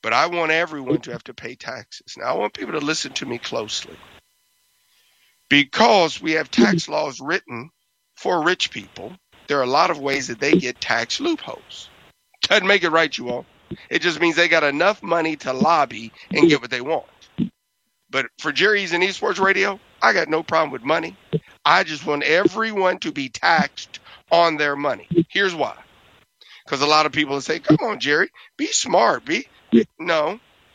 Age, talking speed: 50-69, 185 wpm